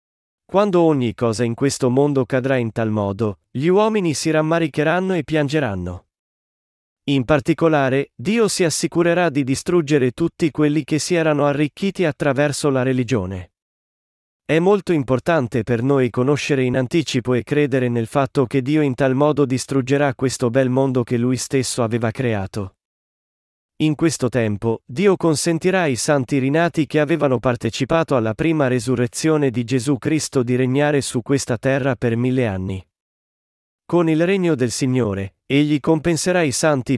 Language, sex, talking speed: Italian, male, 150 wpm